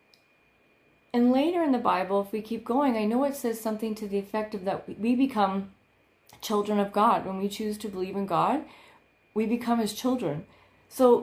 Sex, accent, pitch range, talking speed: female, American, 205-250 Hz, 190 wpm